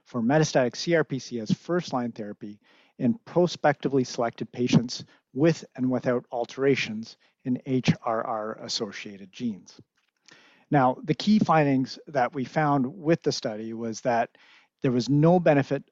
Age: 40-59